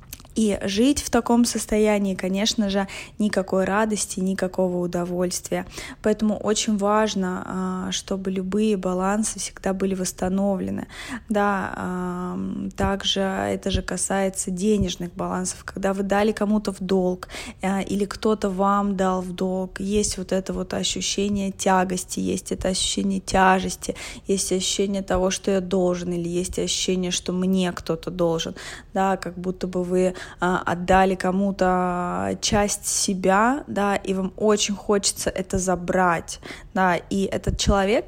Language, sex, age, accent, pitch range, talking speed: Russian, female, 20-39, native, 185-205 Hz, 130 wpm